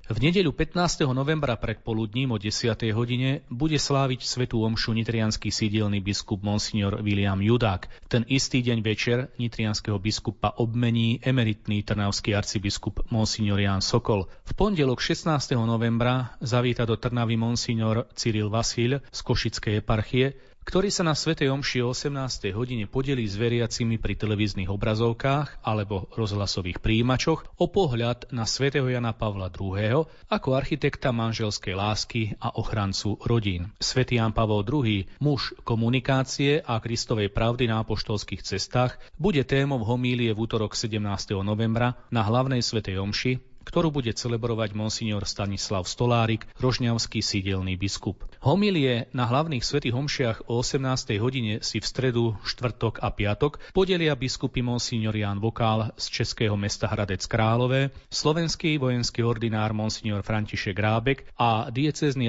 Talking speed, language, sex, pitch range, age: 135 wpm, Slovak, male, 110-130 Hz, 30-49